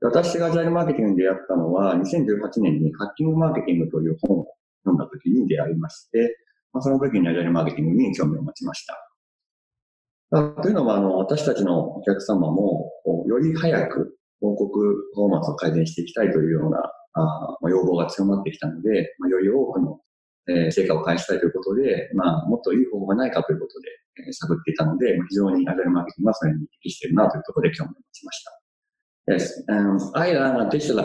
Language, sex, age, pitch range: English, male, 40-59, 90-135 Hz